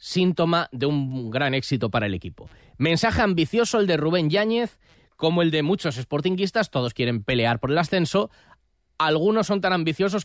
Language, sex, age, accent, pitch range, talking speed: Spanish, male, 20-39, Spanish, 130-185 Hz, 170 wpm